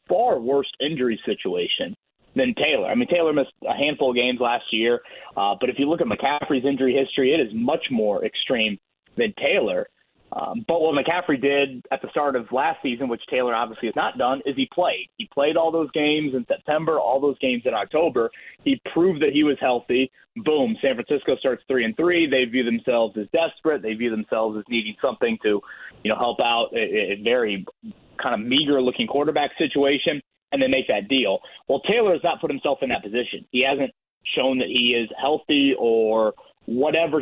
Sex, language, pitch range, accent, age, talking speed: male, English, 125-160 Hz, American, 30-49, 200 wpm